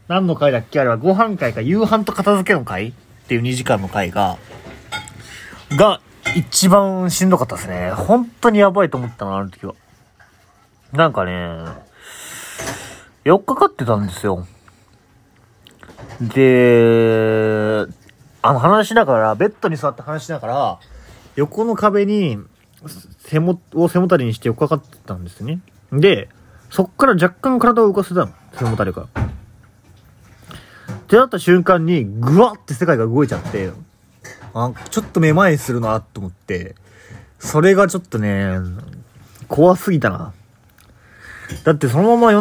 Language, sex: Japanese, male